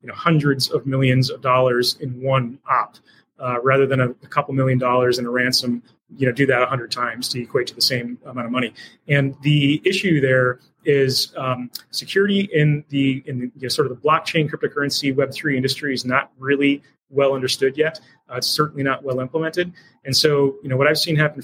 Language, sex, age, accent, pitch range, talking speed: English, male, 30-49, American, 130-145 Hz, 215 wpm